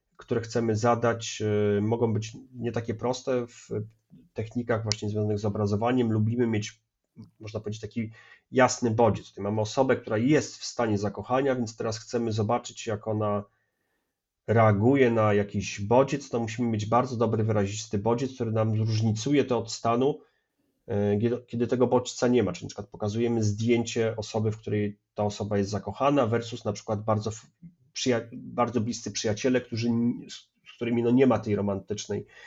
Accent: native